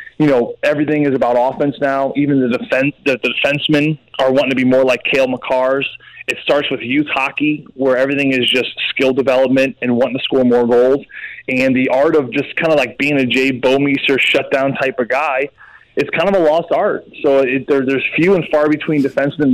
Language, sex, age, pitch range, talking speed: English, male, 20-39, 130-155 Hz, 210 wpm